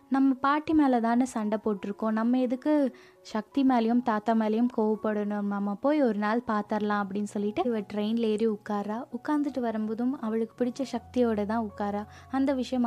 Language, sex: Tamil, female